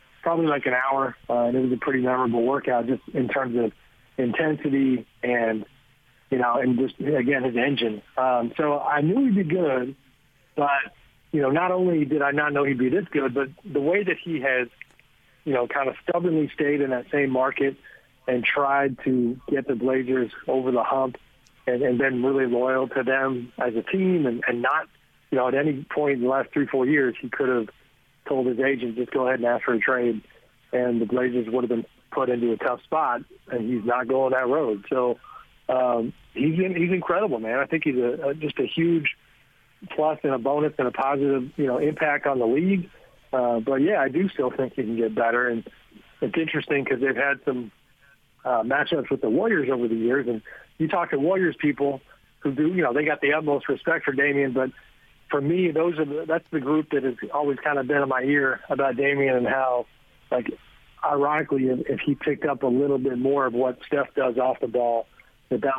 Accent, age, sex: American, 40-59, male